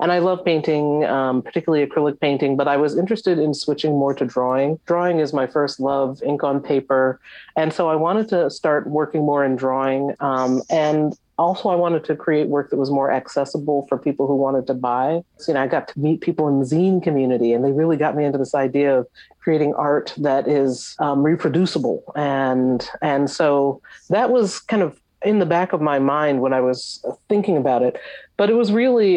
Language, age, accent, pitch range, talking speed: English, 40-59, American, 140-170 Hz, 210 wpm